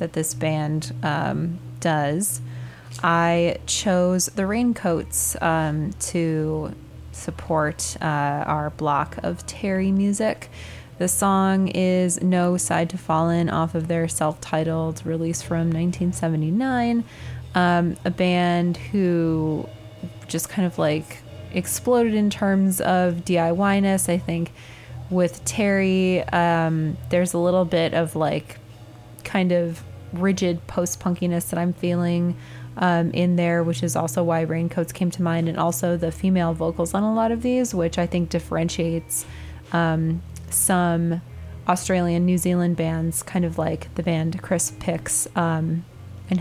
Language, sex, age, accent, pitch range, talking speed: English, female, 20-39, American, 155-180 Hz, 135 wpm